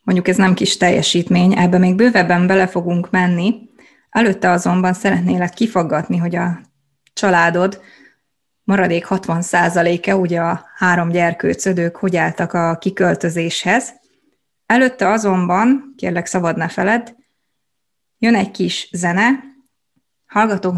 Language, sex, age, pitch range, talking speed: Hungarian, female, 20-39, 175-215 Hz, 115 wpm